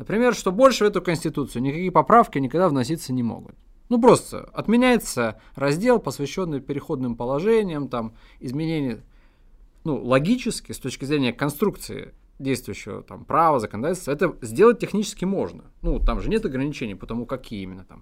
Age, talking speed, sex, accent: 20-39, 145 wpm, male, native